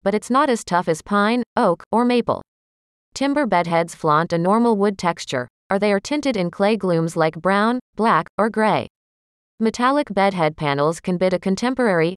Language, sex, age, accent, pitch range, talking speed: English, female, 30-49, American, 165-225 Hz, 180 wpm